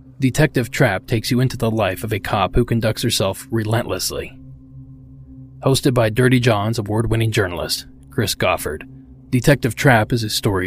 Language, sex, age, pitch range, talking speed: English, male, 30-49, 90-130 Hz, 155 wpm